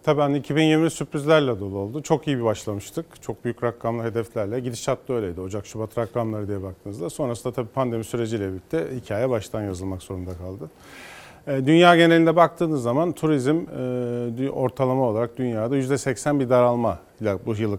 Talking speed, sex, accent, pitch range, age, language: 155 wpm, male, native, 110-135 Hz, 40-59, Turkish